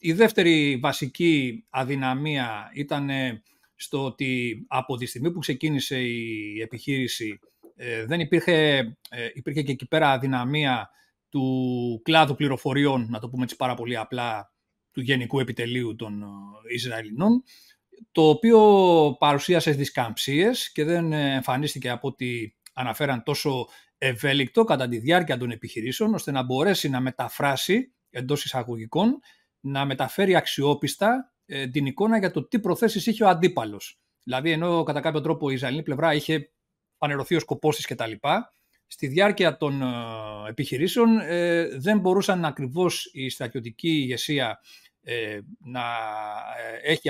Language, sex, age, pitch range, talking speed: Greek, male, 40-59, 125-165 Hz, 130 wpm